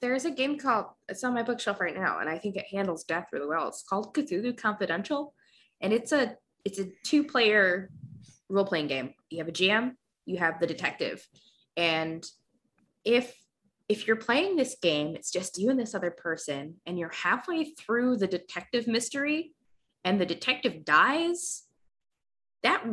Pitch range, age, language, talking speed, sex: 160-235 Hz, 20-39, English, 170 wpm, female